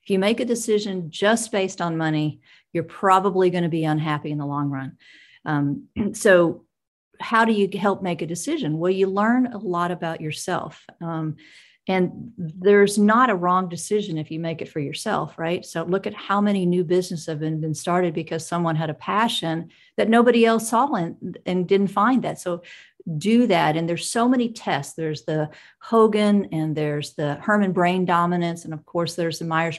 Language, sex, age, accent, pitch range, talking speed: English, female, 40-59, American, 165-205 Hz, 190 wpm